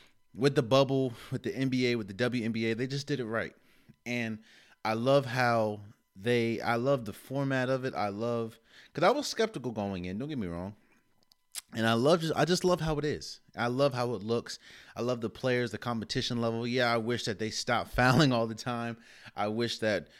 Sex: male